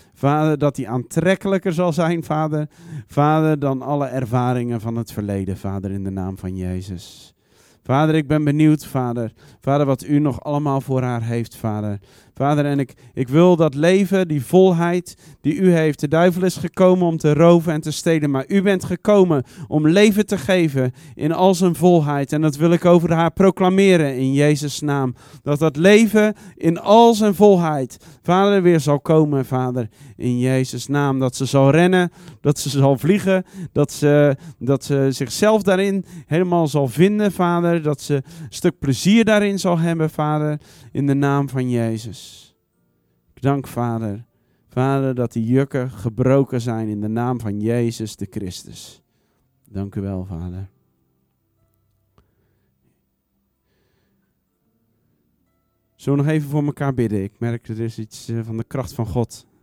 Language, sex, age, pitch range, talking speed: Dutch, male, 40-59, 115-165 Hz, 165 wpm